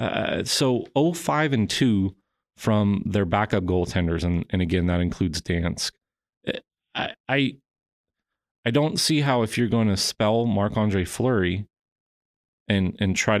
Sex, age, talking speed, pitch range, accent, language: male, 30-49, 135 wpm, 95-125 Hz, American, English